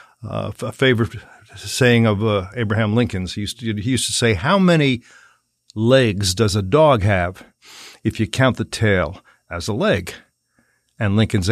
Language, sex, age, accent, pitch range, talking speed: English, male, 50-69, American, 100-130 Hz, 155 wpm